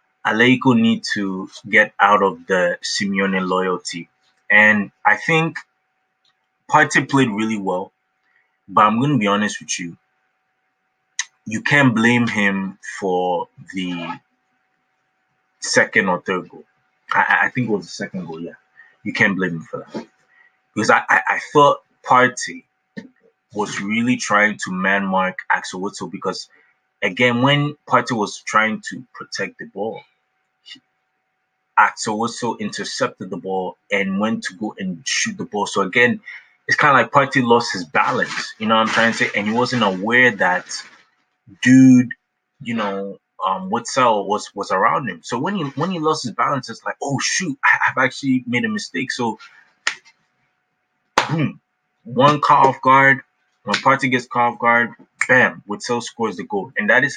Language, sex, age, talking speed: English, male, 20-39, 160 wpm